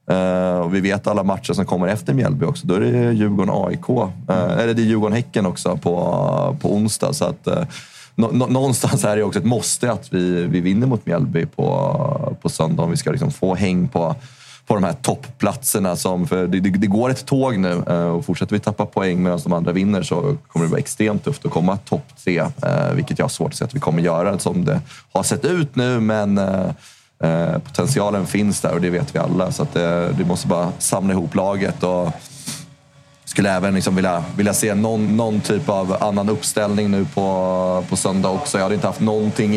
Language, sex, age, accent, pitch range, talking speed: Swedish, male, 30-49, native, 90-115 Hz, 215 wpm